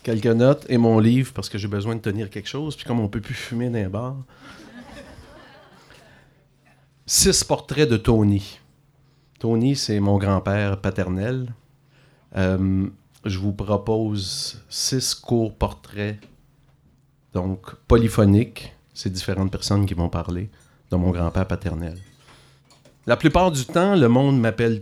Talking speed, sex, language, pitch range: 135 wpm, male, French, 100-135 Hz